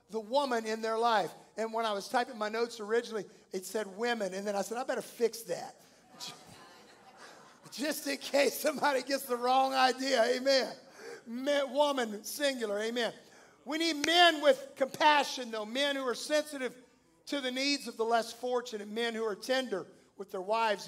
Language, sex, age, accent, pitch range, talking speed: English, male, 50-69, American, 230-285 Hz, 175 wpm